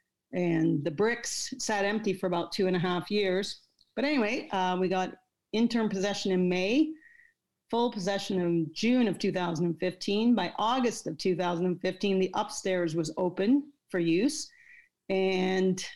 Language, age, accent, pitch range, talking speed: English, 40-59, American, 180-220 Hz, 145 wpm